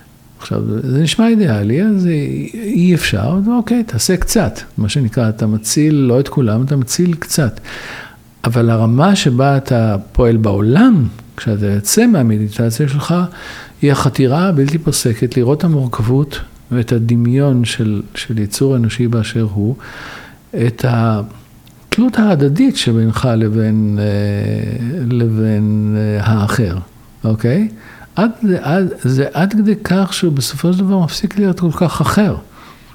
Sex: male